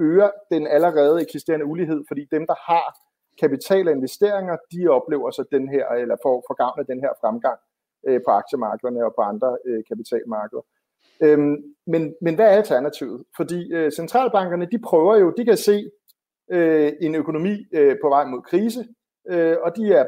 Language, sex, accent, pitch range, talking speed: Danish, male, native, 145-205 Hz, 175 wpm